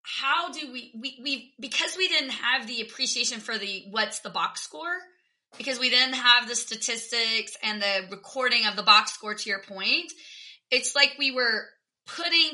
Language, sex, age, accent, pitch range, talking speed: English, female, 30-49, American, 220-280 Hz, 180 wpm